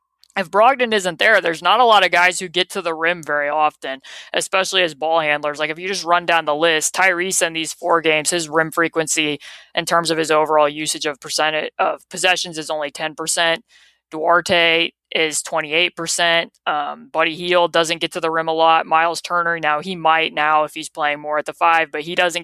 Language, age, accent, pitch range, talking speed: English, 20-39, American, 155-180 Hz, 215 wpm